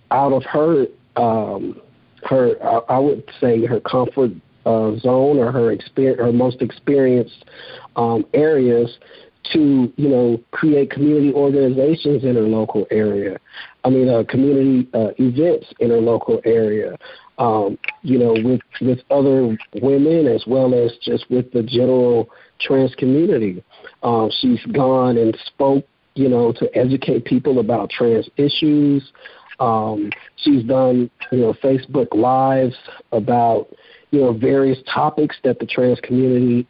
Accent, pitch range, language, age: American, 120-140 Hz, English, 50-69